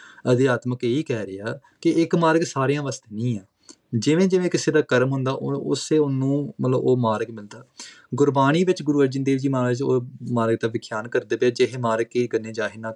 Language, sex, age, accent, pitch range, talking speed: English, male, 20-39, Indian, 120-150 Hz, 200 wpm